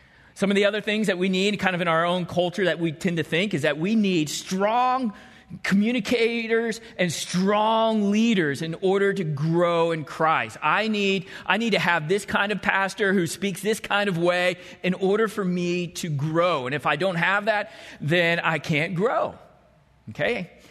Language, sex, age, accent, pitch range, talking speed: English, male, 40-59, American, 155-205 Hz, 195 wpm